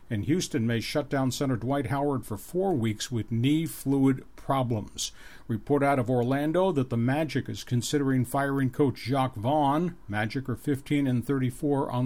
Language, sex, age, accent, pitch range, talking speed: English, male, 50-69, American, 125-145 Hz, 170 wpm